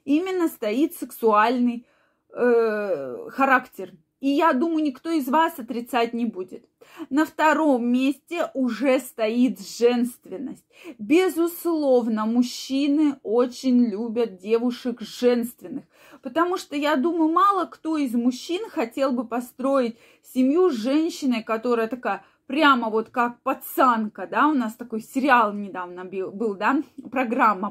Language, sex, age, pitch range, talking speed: Russian, female, 20-39, 235-295 Hz, 120 wpm